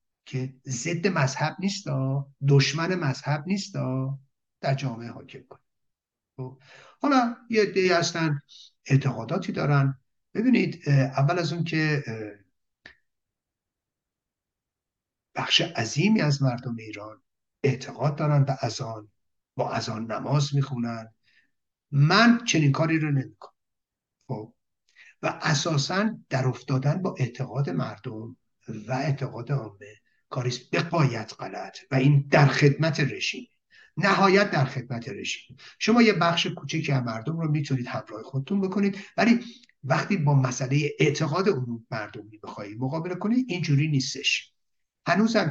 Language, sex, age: English, male, 60-79